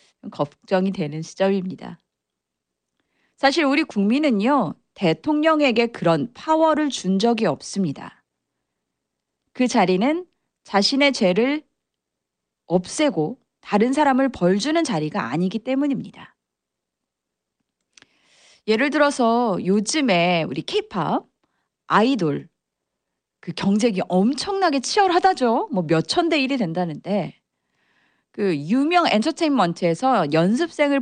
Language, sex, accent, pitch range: Korean, female, native, 185-280 Hz